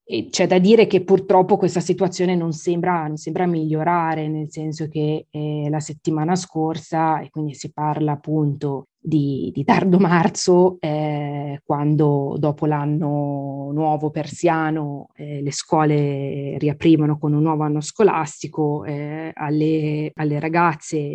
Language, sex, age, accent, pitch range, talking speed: Italian, female, 20-39, native, 150-170 Hz, 135 wpm